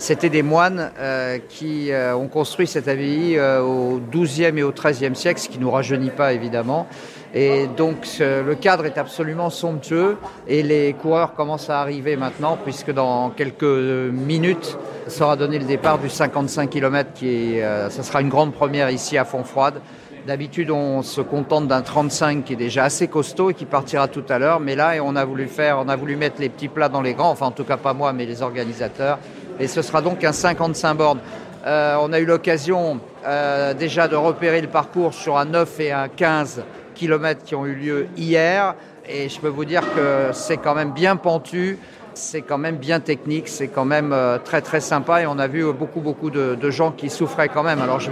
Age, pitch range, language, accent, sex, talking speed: 50-69, 135-160 Hz, French, French, male, 215 wpm